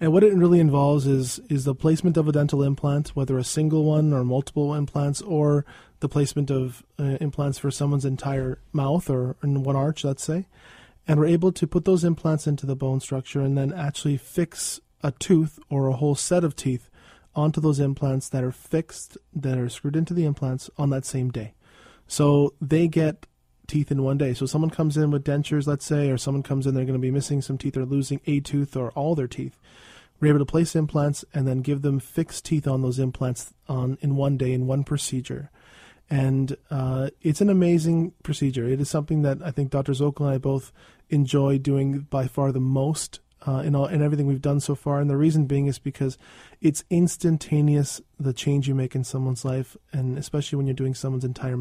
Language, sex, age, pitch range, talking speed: English, male, 20-39, 135-150 Hz, 215 wpm